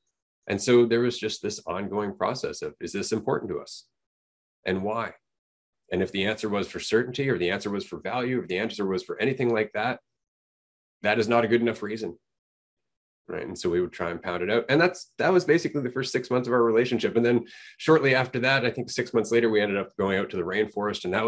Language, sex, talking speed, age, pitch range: English, male, 245 wpm, 30-49, 95-125 Hz